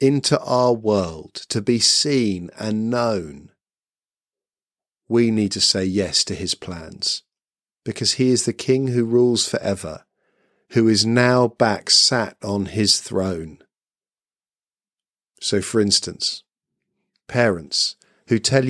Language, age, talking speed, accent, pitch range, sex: English, 40-59, 120 wpm, British, 100-135 Hz, male